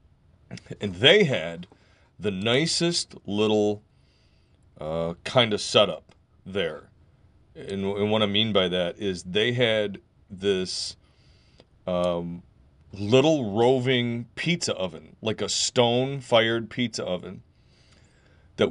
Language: English